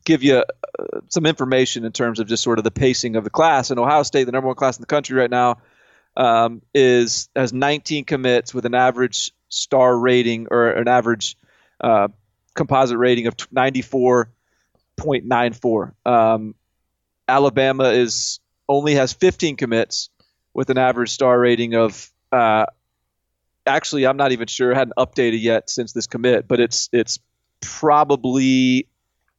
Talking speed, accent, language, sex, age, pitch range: 165 wpm, American, English, male, 30-49, 115-135 Hz